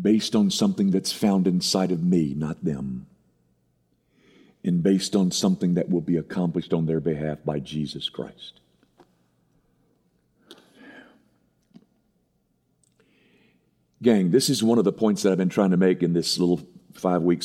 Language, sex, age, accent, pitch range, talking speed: English, male, 50-69, American, 85-125 Hz, 140 wpm